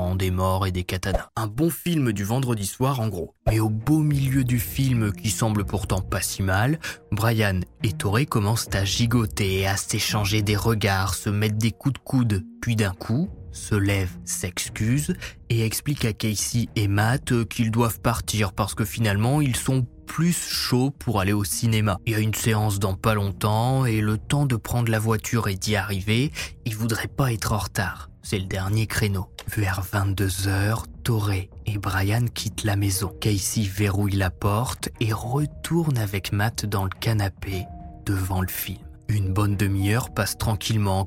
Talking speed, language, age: 180 wpm, French, 20-39